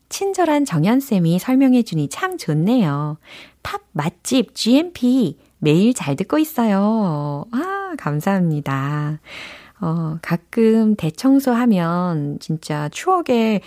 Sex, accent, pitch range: female, native, 150-235 Hz